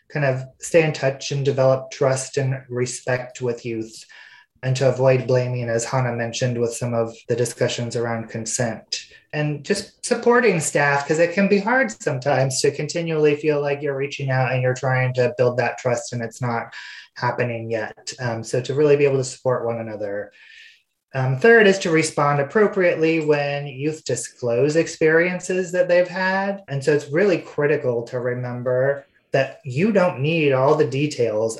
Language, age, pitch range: English, 20-39, 125-155 Hz